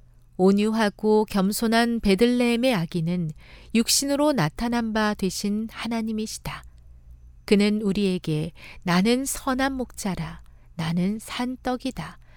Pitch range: 160-240 Hz